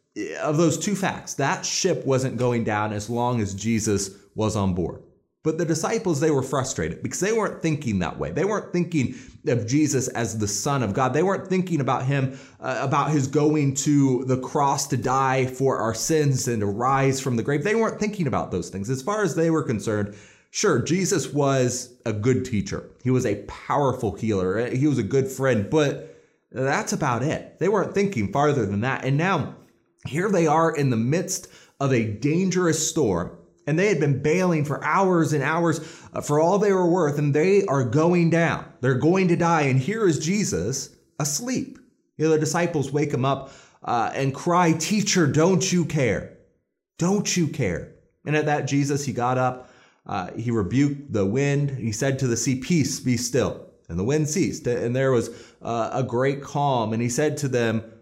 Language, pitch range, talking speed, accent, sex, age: English, 125-165 Hz, 195 wpm, American, male, 30-49